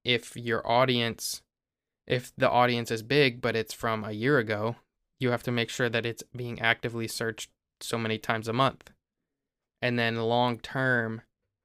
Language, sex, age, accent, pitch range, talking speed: English, male, 20-39, American, 110-125 Hz, 170 wpm